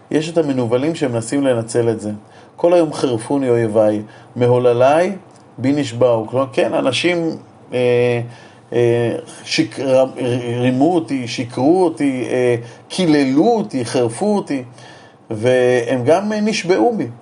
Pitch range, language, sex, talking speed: 120-160 Hz, Hebrew, male, 120 wpm